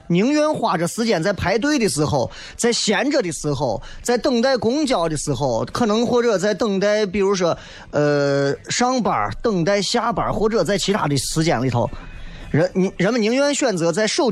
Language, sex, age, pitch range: Chinese, male, 20-39, 145-220 Hz